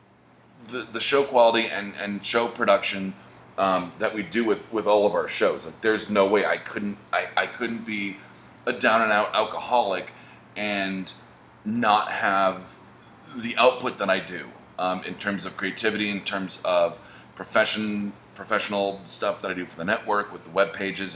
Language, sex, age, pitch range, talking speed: English, male, 30-49, 90-105 Hz, 175 wpm